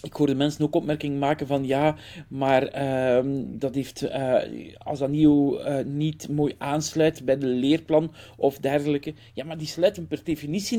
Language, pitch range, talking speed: Dutch, 135-165 Hz, 170 wpm